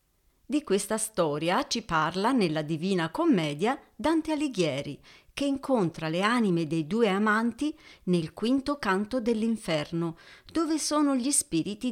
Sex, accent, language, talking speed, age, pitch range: female, native, Italian, 125 wpm, 50-69, 165-225 Hz